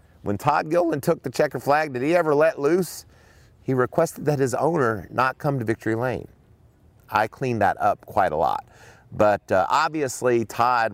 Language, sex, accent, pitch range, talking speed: English, male, American, 100-130 Hz, 180 wpm